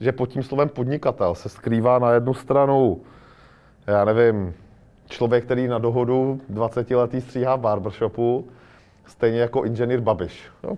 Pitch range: 110-130 Hz